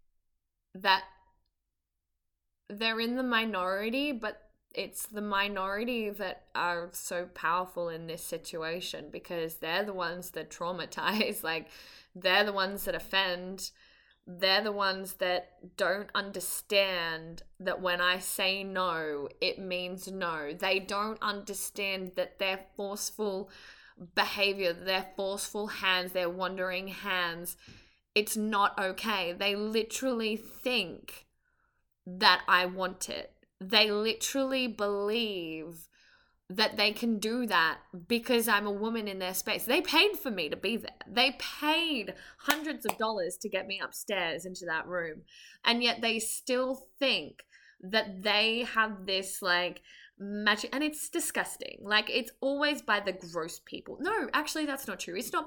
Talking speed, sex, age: 135 wpm, female, 10-29